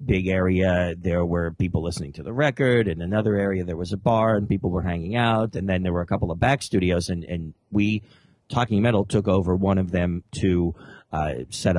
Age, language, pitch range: 40-59, English, 95-135 Hz